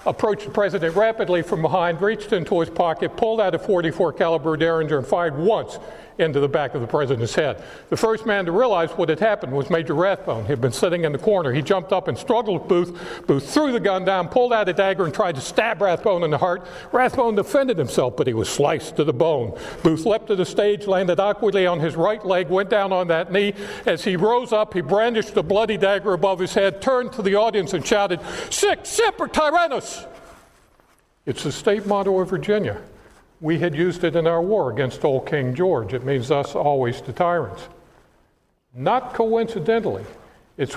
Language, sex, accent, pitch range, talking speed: English, male, American, 165-210 Hz, 210 wpm